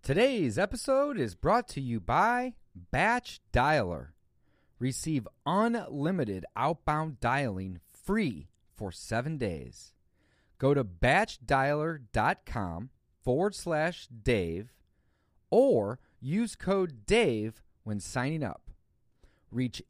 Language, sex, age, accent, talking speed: English, male, 40-59, American, 95 wpm